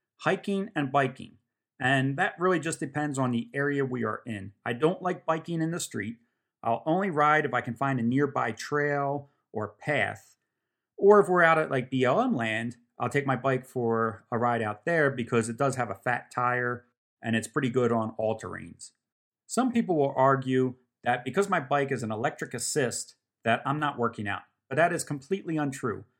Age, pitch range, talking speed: 30-49, 120-155 Hz, 195 wpm